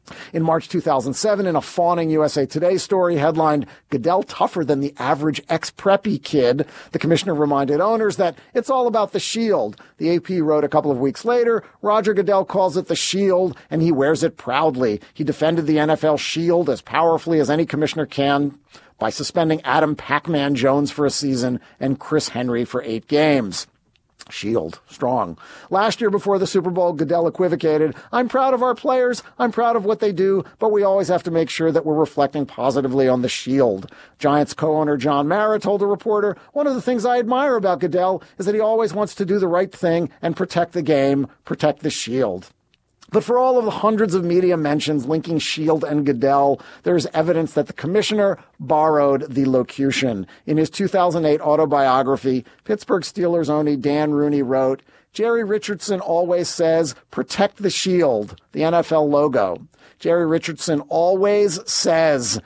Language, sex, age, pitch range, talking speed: English, male, 40-59, 140-190 Hz, 175 wpm